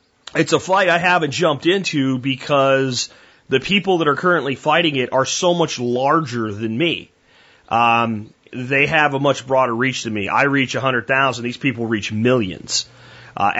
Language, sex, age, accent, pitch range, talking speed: English, male, 30-49, American, 120-145 Hz, 170 wpm